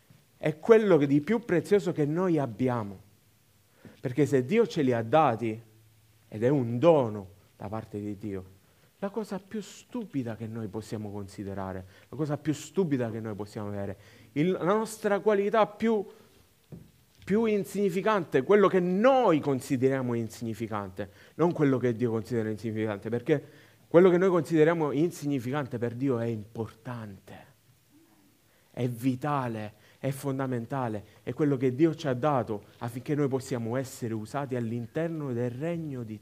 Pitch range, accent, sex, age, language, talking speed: 110-155 Hz, native, male, 30-49, Italian, 140 wpm